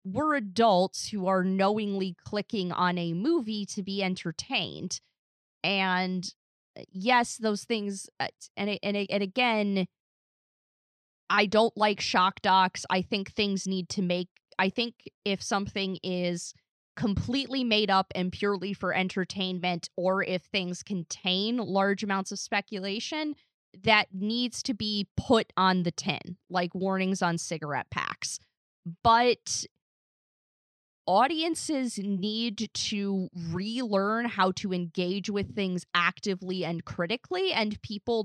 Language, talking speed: English, 125 wpm